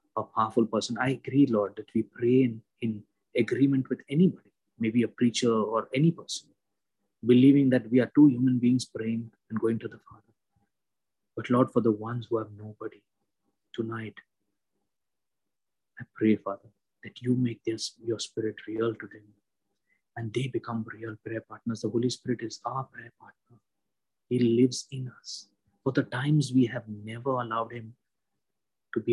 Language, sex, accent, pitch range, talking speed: English, male, Indian, 110-125 Hz, 165 wpm